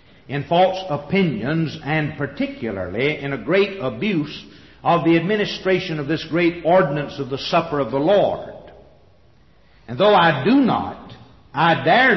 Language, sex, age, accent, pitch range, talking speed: English, male, 60-79, American, 130-175 Hz, 145 wpm